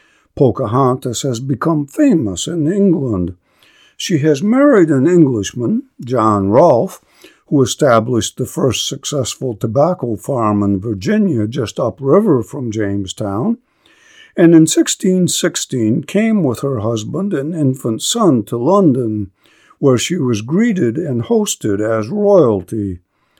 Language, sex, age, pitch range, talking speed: English, male, 60-79, 110-165 Hz, 120 wpm